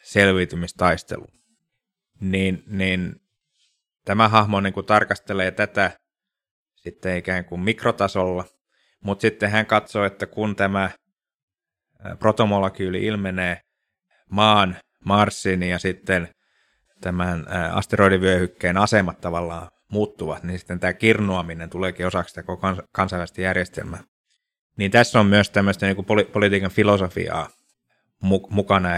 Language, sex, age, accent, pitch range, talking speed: Finnish, male, 30-49, native, 90-100 Hz, 105 wpm